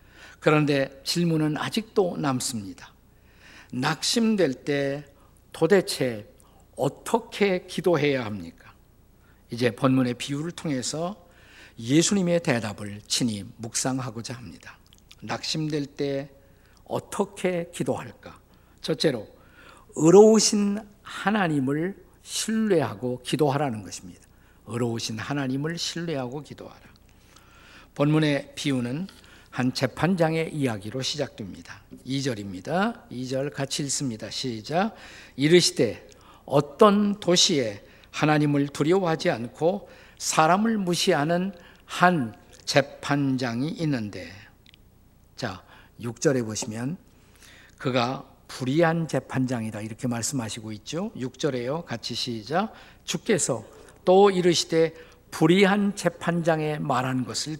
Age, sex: 50-69, male